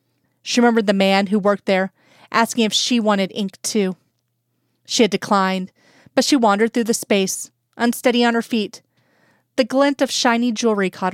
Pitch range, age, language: 190-230 Hz, 30-49, English